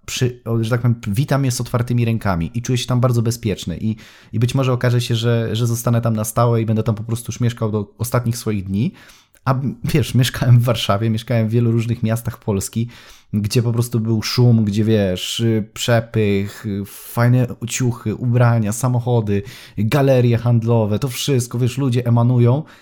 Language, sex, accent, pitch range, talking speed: Polish, male, native, 110-130 Hz, 180 wpm